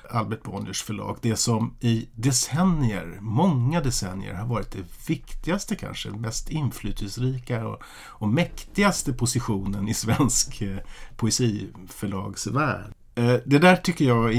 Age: 50-69